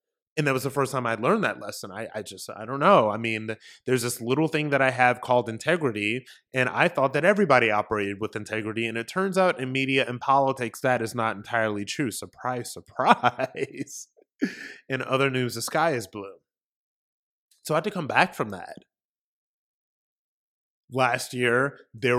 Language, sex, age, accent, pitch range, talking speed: English, male, 20-39, American, 115-135 Hz, 185 wpm